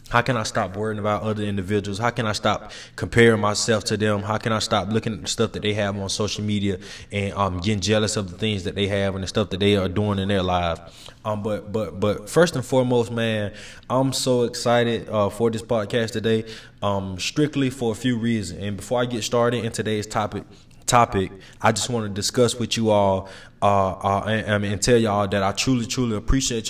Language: English